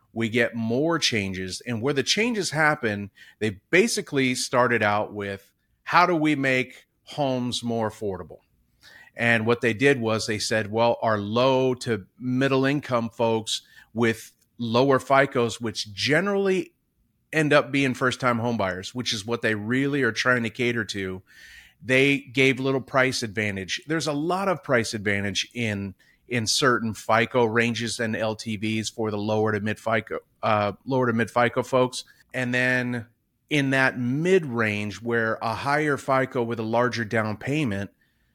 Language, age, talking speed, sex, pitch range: English, 40-59, 155 wpm, male, 110-135 Hz